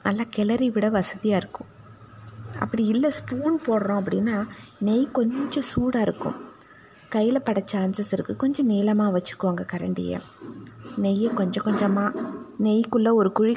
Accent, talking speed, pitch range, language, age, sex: native, 125 wpm, 190-235 Hz, Tamil, 20-39, female